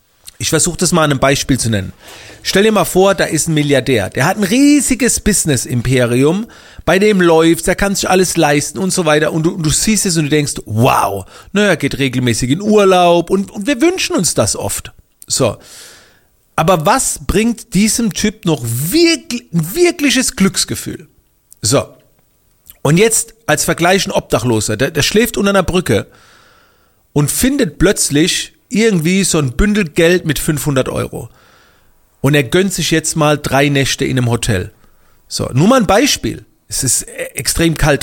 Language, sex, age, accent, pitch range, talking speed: German, male, 40-59, German, 135-195 Hz, 175 wpm